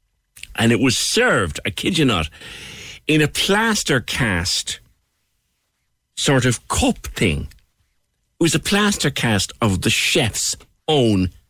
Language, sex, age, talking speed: English, male, 60-79, 130 wpm